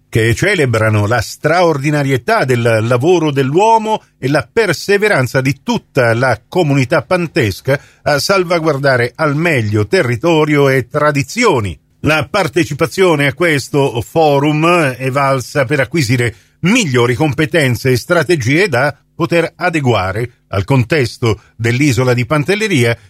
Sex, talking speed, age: male, 110 wpm, 50-69